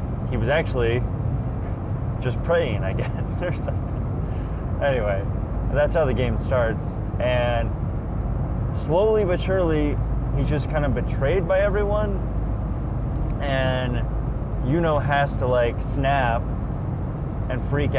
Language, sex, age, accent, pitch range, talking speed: English, male, 20-39, American, 110-130 Hz, 115 wpm